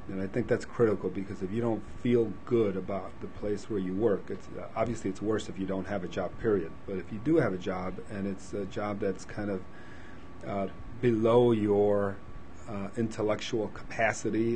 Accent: American